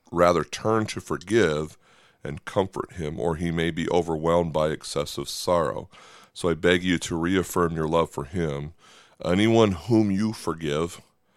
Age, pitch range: 30-49, 75-85 Hz